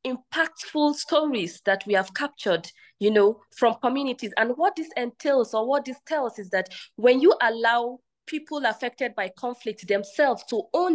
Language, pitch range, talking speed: English, 215-290 Hz, 165 wpm